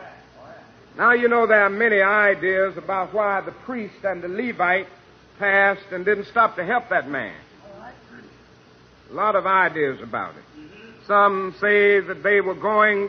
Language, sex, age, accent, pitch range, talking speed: English, male, 60-79, American, 185-220 Hz, 155 wpm